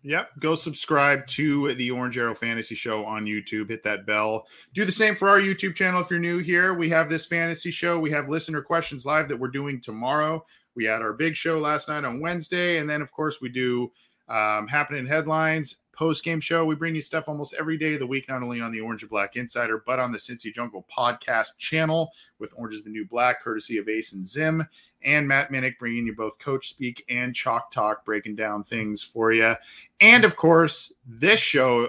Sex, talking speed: male, 220 wpm